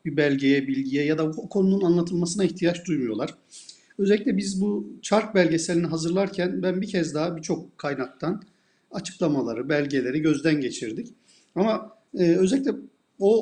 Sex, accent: male, native